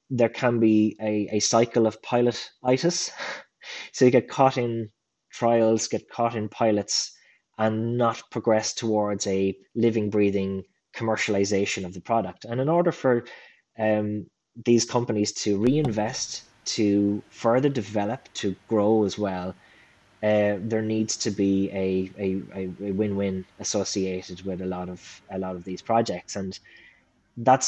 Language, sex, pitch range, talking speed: English, male, 95-115 Hz, 145 wpm